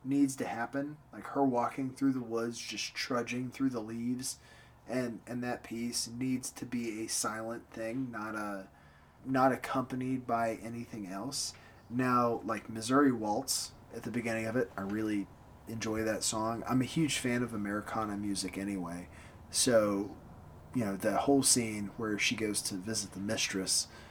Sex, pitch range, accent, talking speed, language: male, 100-130 Hz, American, 160 wpm, English